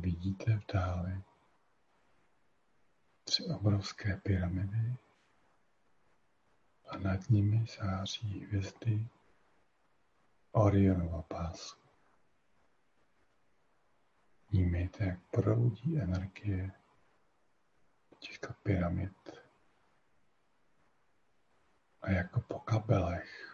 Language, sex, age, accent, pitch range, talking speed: Czech, male, 50-69, native, 95-110 Hz, 60 wpm